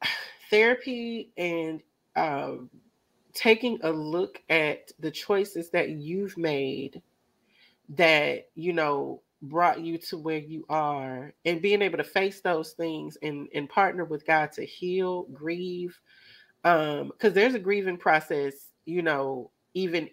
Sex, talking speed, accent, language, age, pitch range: female, 135 wpm, American, English, 30-49, 150-180 Hz